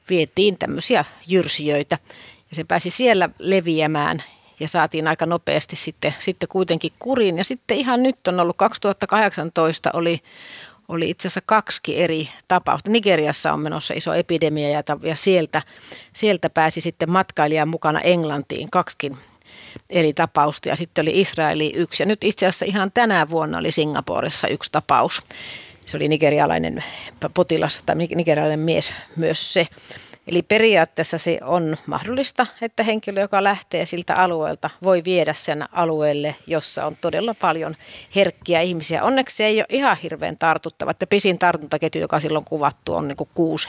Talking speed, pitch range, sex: 150 wpm, 160-200 Hz, female